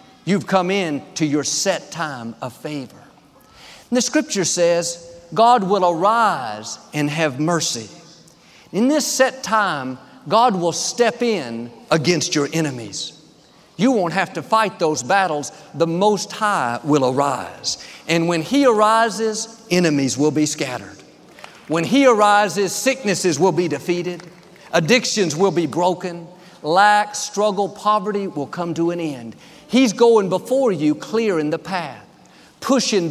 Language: English